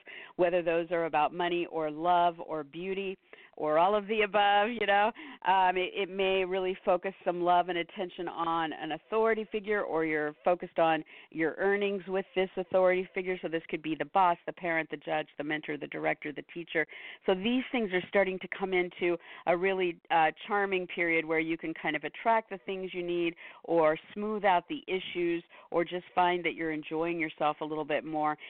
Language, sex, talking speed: English, female, 200 wpm